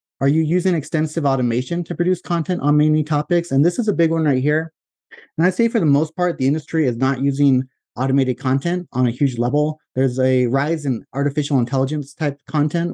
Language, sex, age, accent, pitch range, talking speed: English, male, 30-49, American, 125-150 Hz, 210 wpm